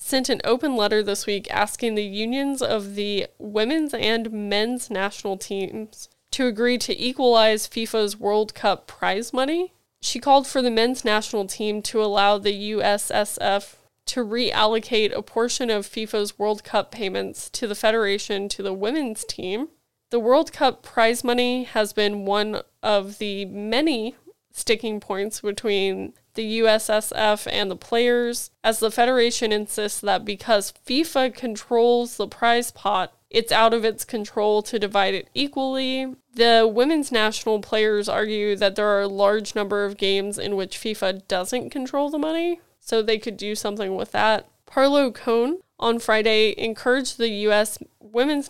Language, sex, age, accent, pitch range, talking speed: English, female, 10-29, American, 210-245 Hz, 155 wpm